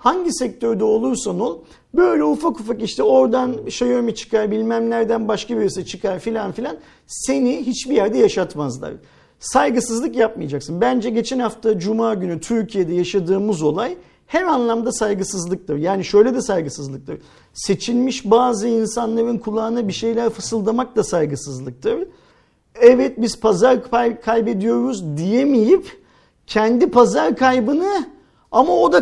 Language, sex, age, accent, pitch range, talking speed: Turkish, male, 50-69, native, 195-245 Hz, 125 wpm